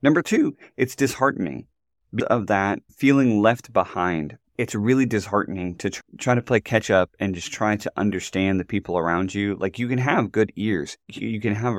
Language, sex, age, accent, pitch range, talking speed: English, male, 20-39, American, 95-110 Hz, 185 wpm